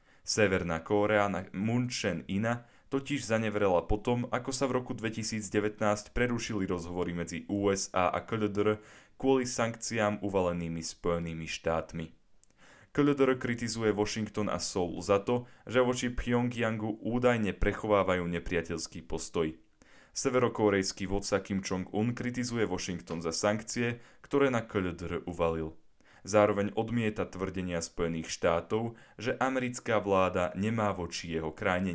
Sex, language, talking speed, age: male, Slovak, 115 wpm, 10-29